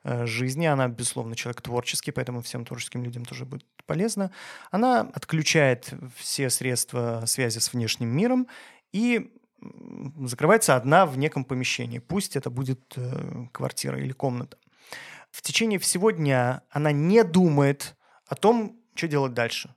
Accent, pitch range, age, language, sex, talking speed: native, 125-175 Hz, 30-49, Russian, male, 130 wpm